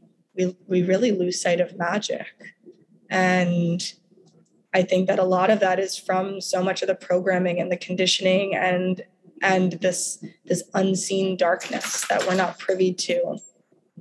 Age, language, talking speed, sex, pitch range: 20-39, English, 155 wpm, female, 180-195 Hz